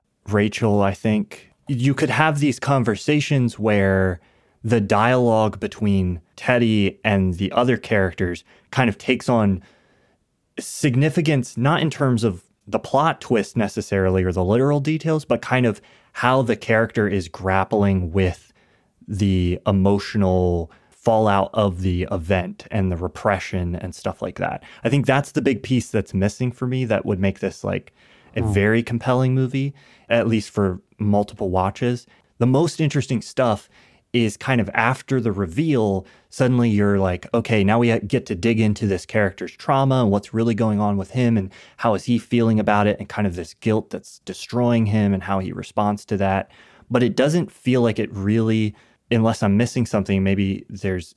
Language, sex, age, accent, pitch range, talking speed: English, male, 20-39, American, 100-125 Hz, 170 wpm